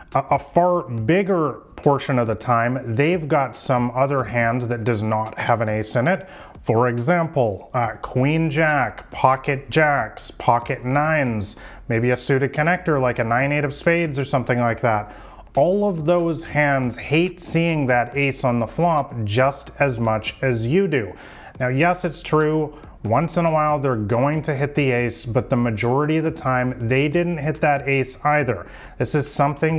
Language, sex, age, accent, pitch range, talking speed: English, male, 30-49, American, 120-150 Hz, 175 wpm